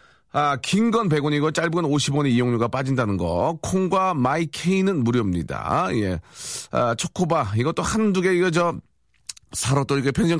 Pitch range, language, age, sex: 105-145 Hz, Korean, 40-59, male